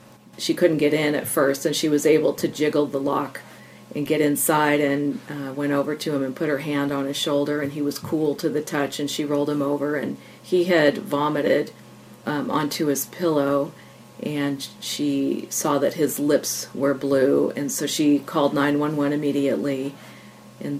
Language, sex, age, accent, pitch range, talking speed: English, female, 40-59, American, 140-170 Hz, 190 wpm